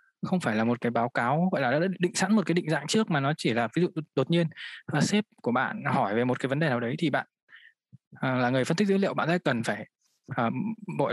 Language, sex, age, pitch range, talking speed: Vietnamese, male, 20-39, 125-175 Hz, 270 wpm